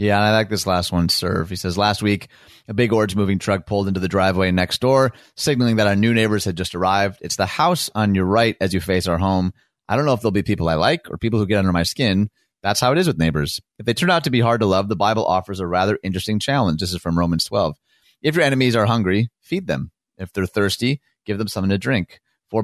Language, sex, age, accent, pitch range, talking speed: English, male, 30-49, American, 90-110 Hz, 265 wpm